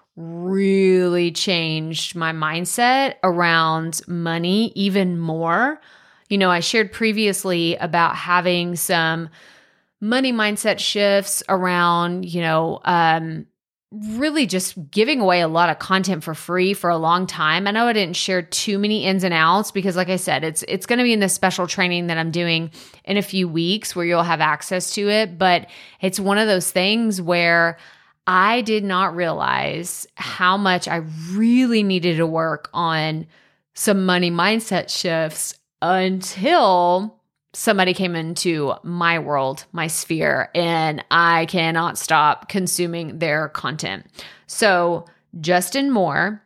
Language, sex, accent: English, female, American